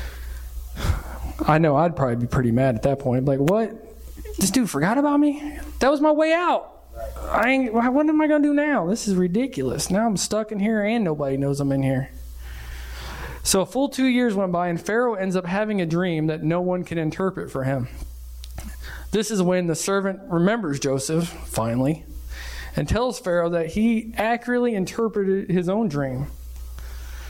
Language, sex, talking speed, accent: English, male, 185 wpm, American